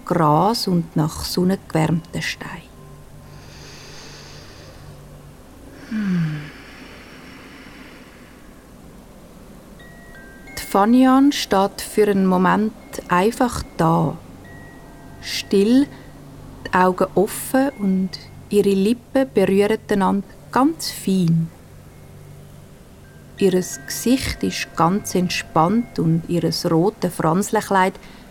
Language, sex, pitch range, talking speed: German, female, 170-220 Hz, 70 wpm